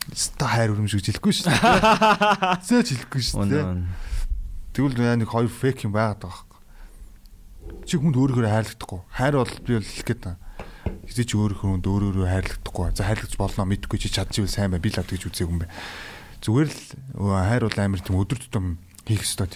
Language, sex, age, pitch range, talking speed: English, male, 30-49, 95-115 Hz, 130 wpm